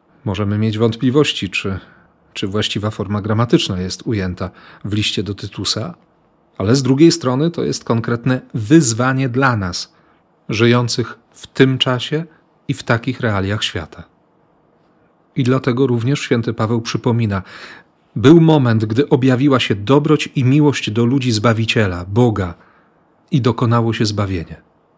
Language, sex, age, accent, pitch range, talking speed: Polish, male, 40-59, native, 105-135 Hz, 130 wpm